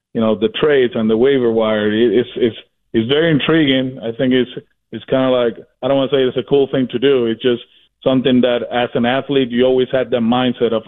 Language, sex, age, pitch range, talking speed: English, male, 30-49, 120-135 Hz, 245 wpm